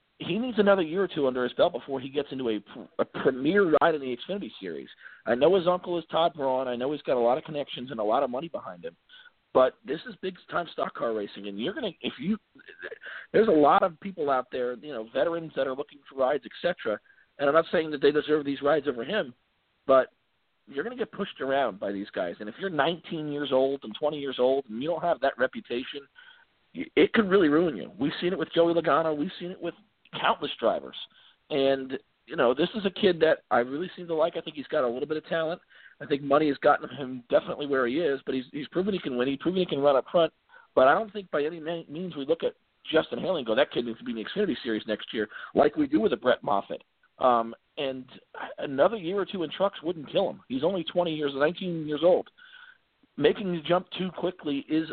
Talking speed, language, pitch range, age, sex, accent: 250 wpm, English, 135-190 Hz, 50-69, male, American